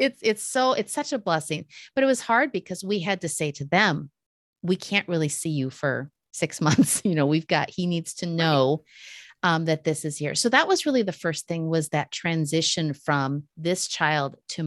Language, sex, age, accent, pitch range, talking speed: English, female, 40-59, American, 150-185 Hz, 215 wpm